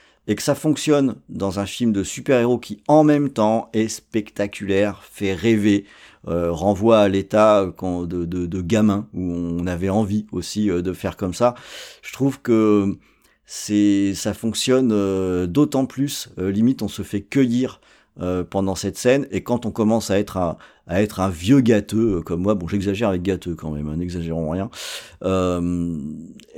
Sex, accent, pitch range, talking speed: male, French, 95-120 Hz, 165 wpm